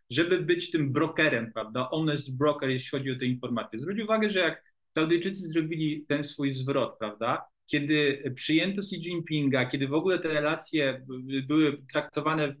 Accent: native